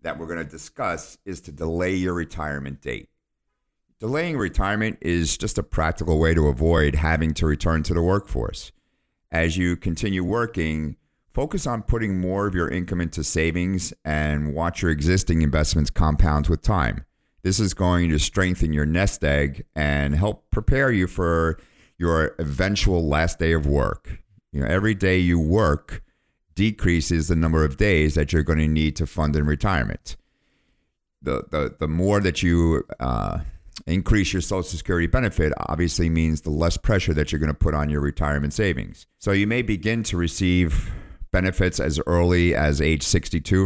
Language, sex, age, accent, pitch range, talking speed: English, male, 50-69, American, 75-95 Hz, 165 wpm